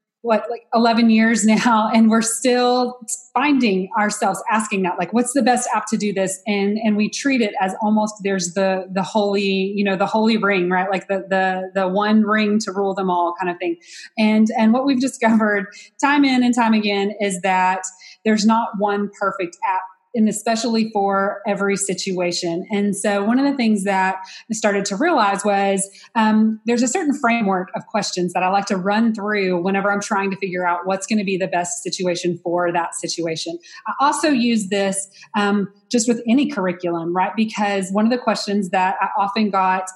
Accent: American